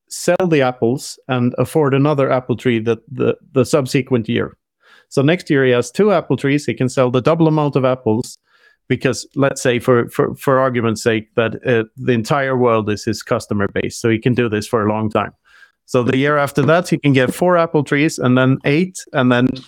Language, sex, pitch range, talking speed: English, male, 120-145 Hz, 215 wpm